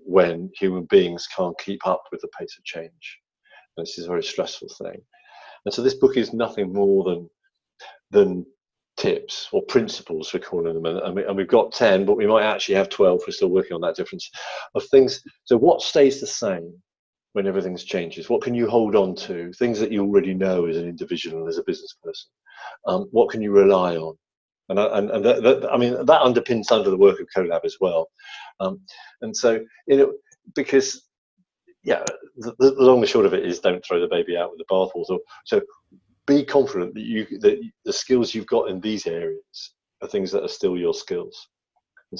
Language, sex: English, male